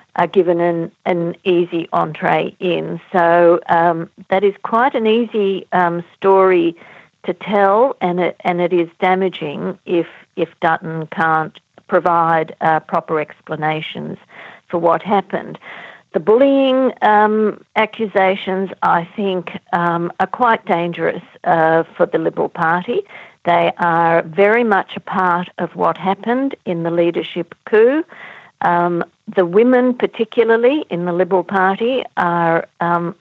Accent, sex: Australian, female